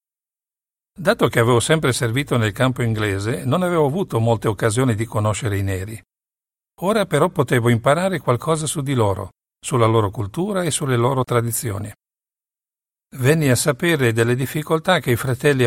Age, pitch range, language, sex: 50-69, 115-140 Hz, Italian, male